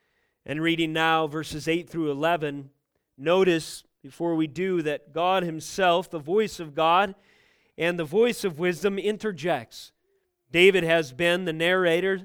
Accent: American